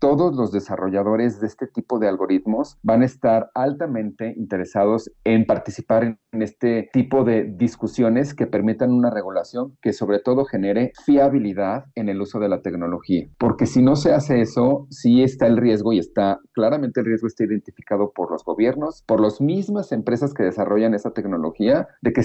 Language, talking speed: Spanish, 175 wpm